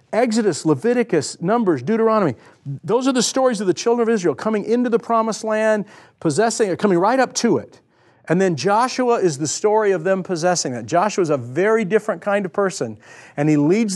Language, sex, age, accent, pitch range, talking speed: English, male, 50-69, American, 150-210 Hz, 200 wpm